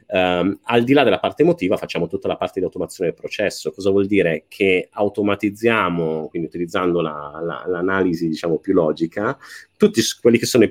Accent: native